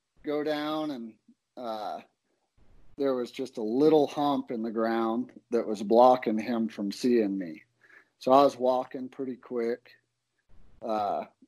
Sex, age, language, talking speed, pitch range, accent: male, 40-59, English, 140 wpm, 110-130 Hz, American